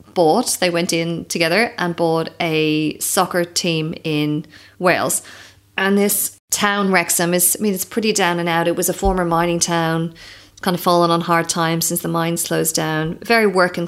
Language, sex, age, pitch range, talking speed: English, female, 30-49, 165-195 Hz, 185 wpm